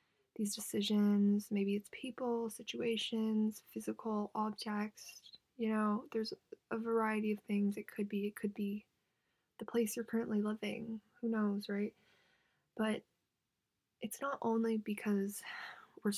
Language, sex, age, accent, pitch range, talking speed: English, female, 20-39, American, 205-225 Hz, 130 wpm